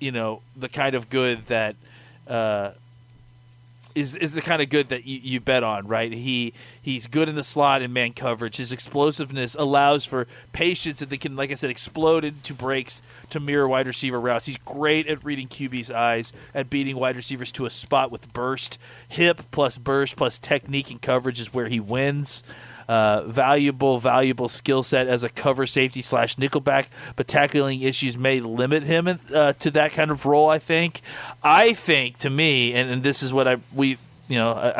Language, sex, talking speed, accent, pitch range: English, male, 195 wpm, American, 120-145 Hz